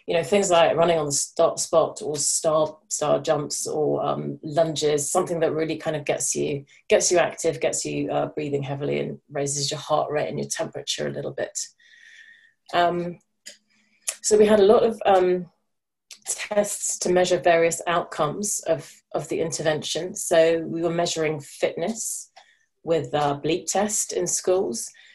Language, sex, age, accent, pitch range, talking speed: English, female, 30-49, British, 150-180 Hz, 160 wpm